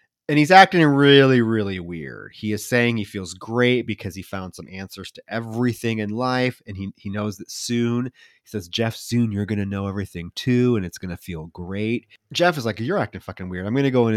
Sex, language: male, English